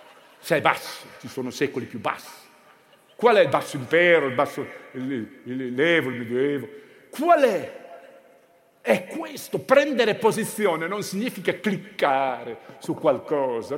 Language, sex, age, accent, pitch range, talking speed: Italian, male, 50-69, native, 150-205 Hz, 140 wpm